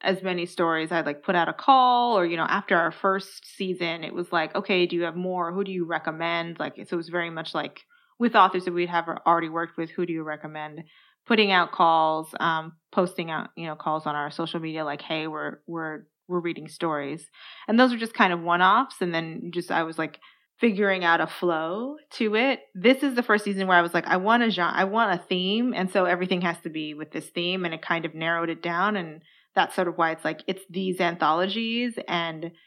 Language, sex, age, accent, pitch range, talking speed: English, female, 20-39, American, 165-195 Hz, 240 wpm